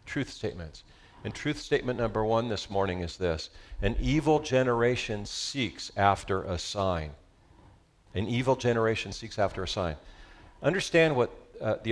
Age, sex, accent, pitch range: 50-69, male, American, 100-130 Hz